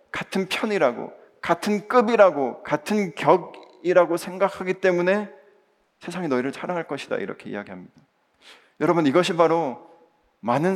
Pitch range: 125-185 Hz